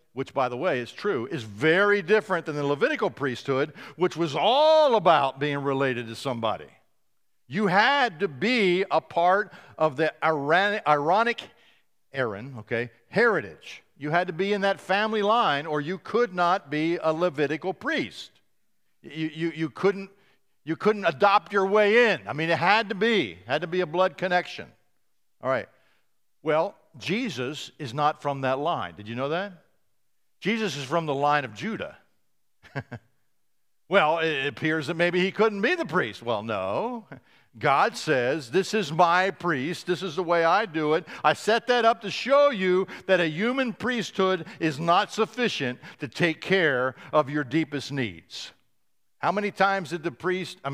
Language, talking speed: English, 170 wpm